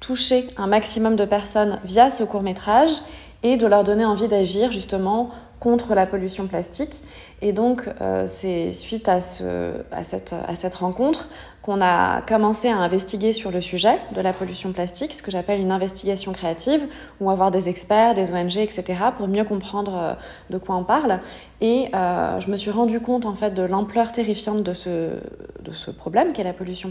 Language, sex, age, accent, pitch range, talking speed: French, female, 20-39, French, 190-235 Hz, 185 wpm